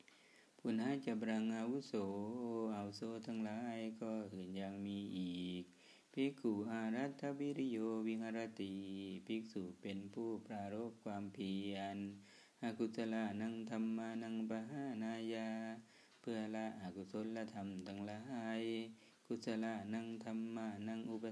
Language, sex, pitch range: Thai, male, 100-115 Hz